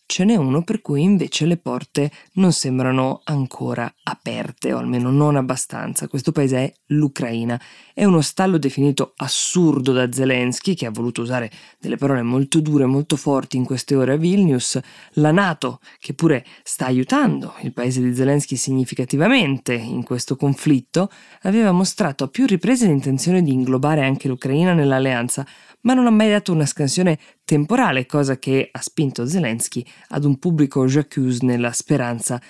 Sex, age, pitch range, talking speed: female, 20-39, 130-150 Hz, 160 wpm